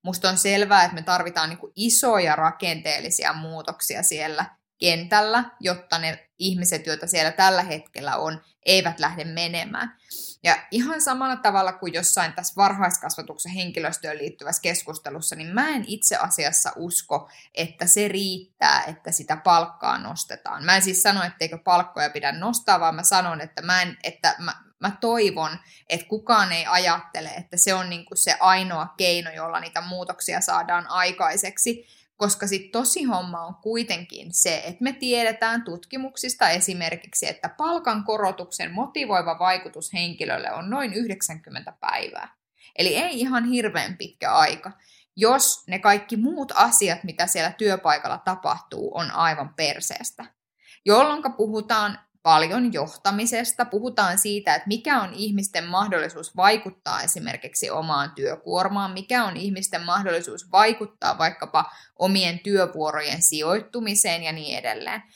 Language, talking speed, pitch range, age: Finnish, 135 wpm, 170-215 Hz, 20-39